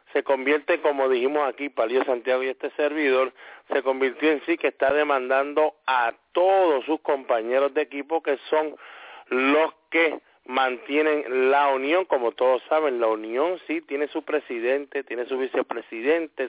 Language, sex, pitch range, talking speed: English, male, 130-155 Hz, 155 wpm